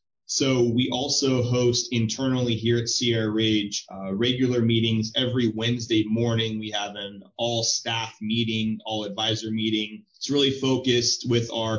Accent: American